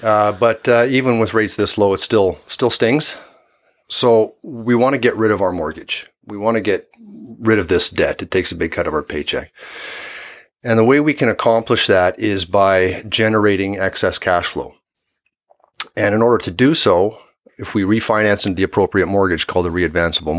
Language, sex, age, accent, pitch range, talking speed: English, male, 40-59, American, 90-115 Hz, 195 wpm